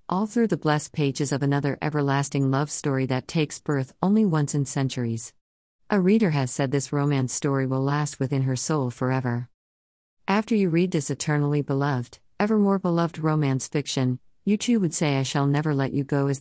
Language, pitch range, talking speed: English, 130-165 Hz, 190 wpm